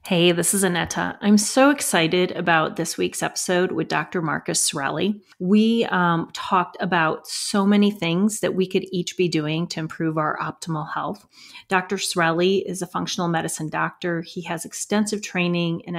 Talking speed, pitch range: 170 wpm, 165-190 Hz